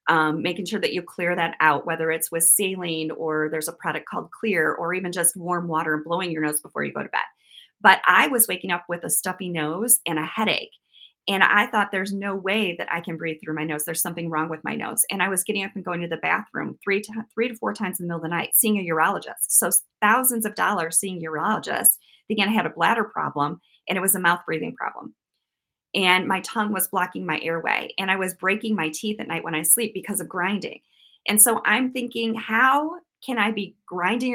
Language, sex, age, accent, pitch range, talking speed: English, female, 30-49, American, 165-215 Hz, 240 wpm